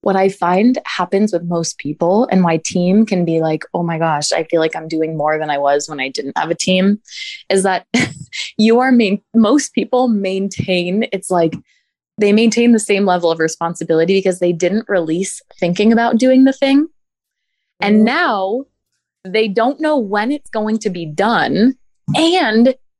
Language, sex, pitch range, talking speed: English, female, 175-230 Hz, 180 wpm